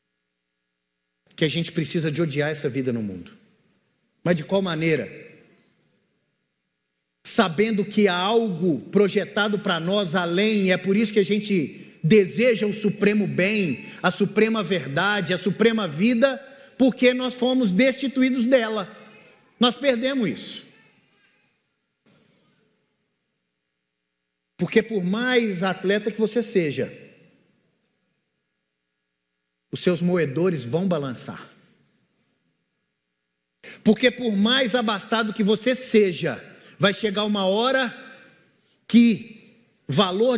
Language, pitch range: Portuguese, 165-230 Hz